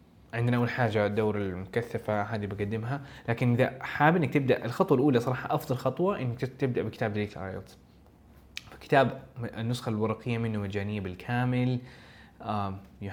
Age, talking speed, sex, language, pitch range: 20-39, 135 wpm, male, Arabic, 105-125 Hz